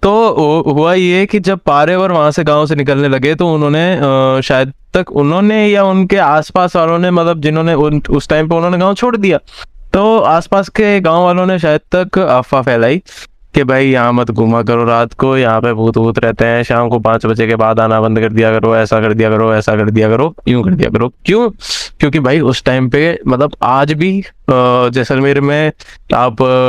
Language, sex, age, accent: English, male, 20-39, Indian